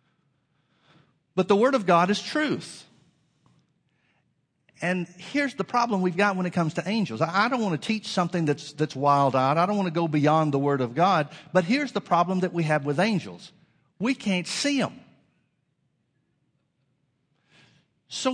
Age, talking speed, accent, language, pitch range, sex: 50-69, 165 wpm, American, English, 150-195 Hz, male